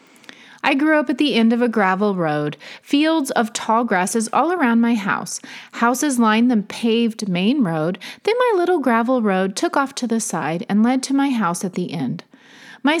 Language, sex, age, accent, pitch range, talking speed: English, female, 30-49, American, 205-270 Hz, 200 wpm